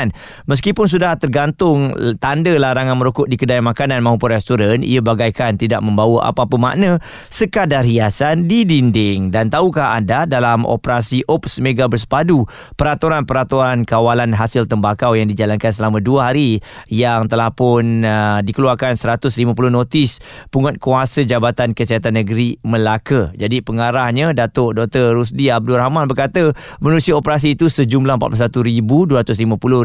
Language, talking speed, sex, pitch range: Malay, 125 wpm, male, 115-140 Hz